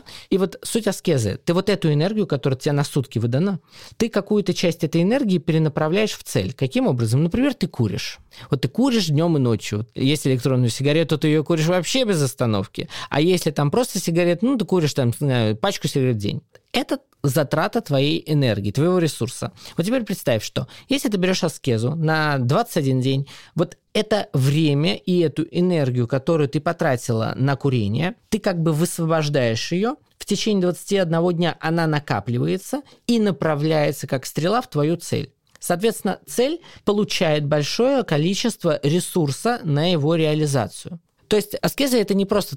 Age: 20-39